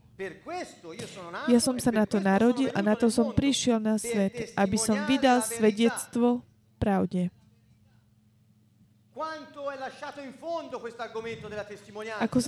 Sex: female